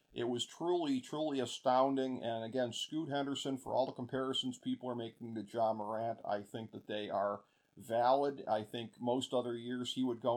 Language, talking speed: English, 190 wpm